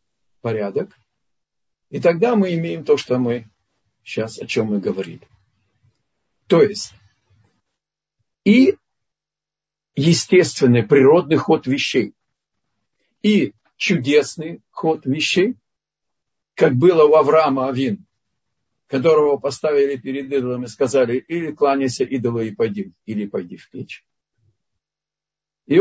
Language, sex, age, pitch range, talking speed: Russian, male, 50-69, 125-195 Hz, 100 wpm